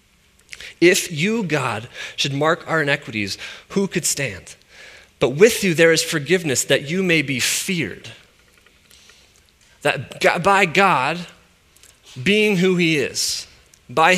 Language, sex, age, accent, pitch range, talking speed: English, male, 30-49, American, 140-180 Hz, 125 wpm